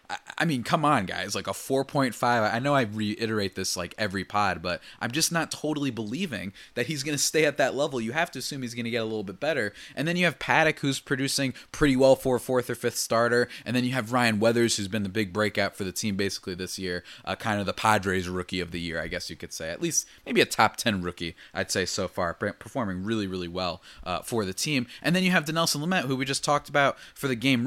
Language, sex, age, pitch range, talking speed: English, male, 20-39, 100-145 Hz, 260 wpm